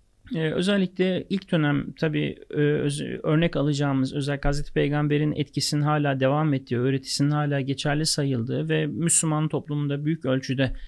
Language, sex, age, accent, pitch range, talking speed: Turkish, male, 40-59, native, 145-175 Hz, 140 wpm